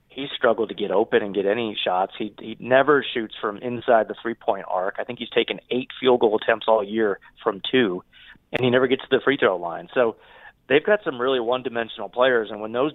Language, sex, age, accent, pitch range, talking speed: English, male, 30-49, American, 115-130 Hz, 220 wpm